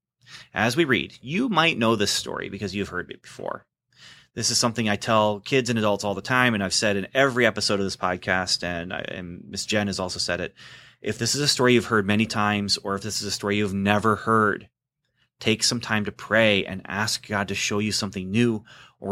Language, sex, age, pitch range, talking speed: English, male, 30-49, 100-125 Hz, 230 wpm